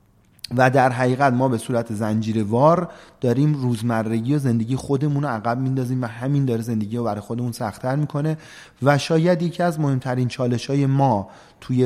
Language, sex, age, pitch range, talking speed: Persian, male, 30-49, 110-140 Hz, 160 wpm